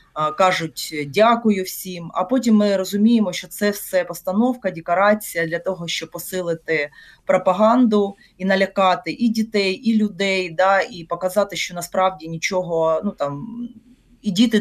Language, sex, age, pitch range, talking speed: Ukrainian, female, 30-49, 170-215 Hz, 135 wpm